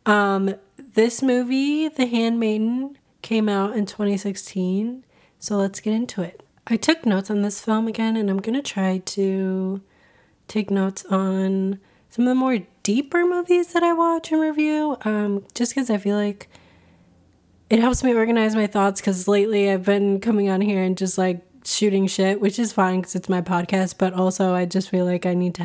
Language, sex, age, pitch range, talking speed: English, female, 20-39, 185-225 Hz, 185 wpm